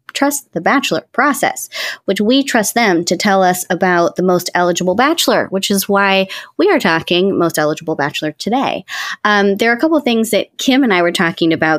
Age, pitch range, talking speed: 20-39, 170-235 Hz, 205 wpm